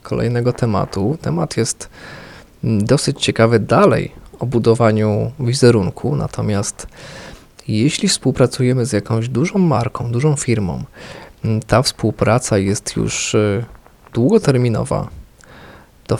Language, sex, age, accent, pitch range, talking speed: English, male, 20-39, Polish, 110-145 Hz, 95 wpm